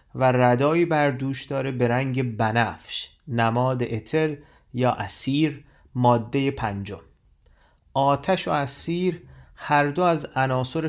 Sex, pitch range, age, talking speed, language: male, 120-155 Hz, 30-49, 110 wpm, Persian